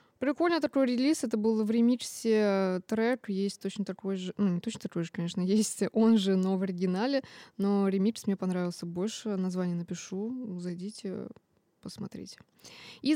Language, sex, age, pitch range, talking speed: Russian, female, 20-39, 185-230 Hz, 155 wpm